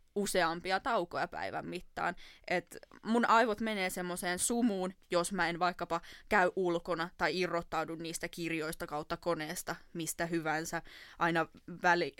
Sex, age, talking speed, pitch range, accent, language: female, 20-39, 130 wpm, 165-190 Hz, native, Finnish